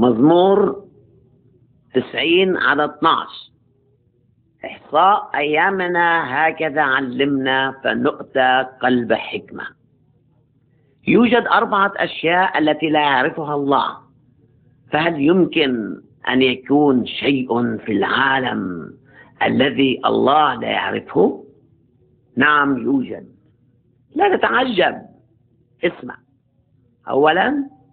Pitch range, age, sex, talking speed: 135-175 Hz, 50-69, female, 75 wpm